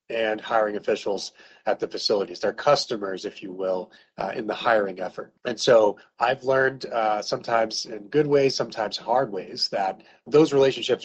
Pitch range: 105-125 Hz